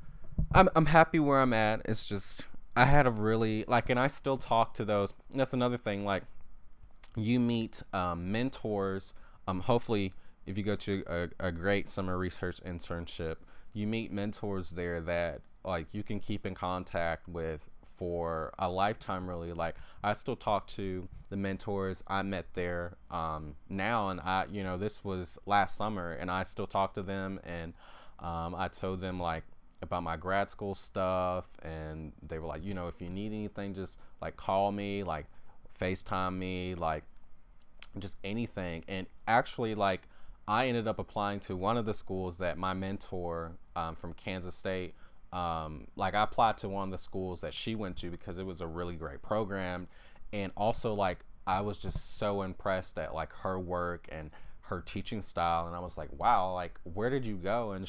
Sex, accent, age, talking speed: male, American, 20-39, 185 wpm